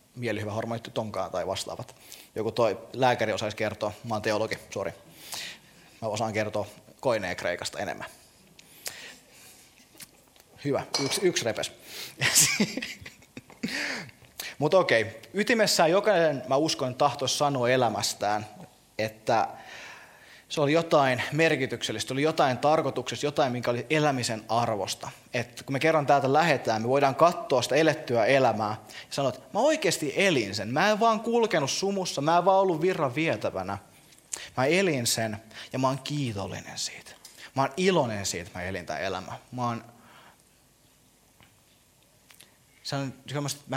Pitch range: 115-150 Hz